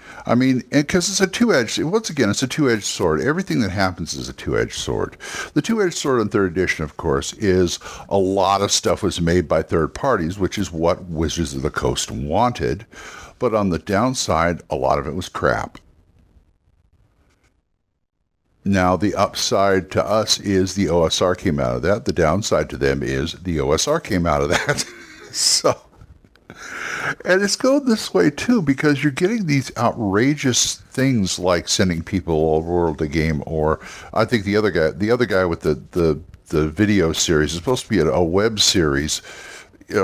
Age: 60-79